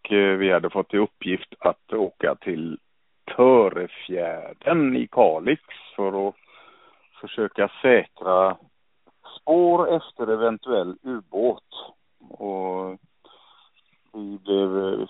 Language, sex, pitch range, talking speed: Swedish, male, 100-130 Hz, 80 wpm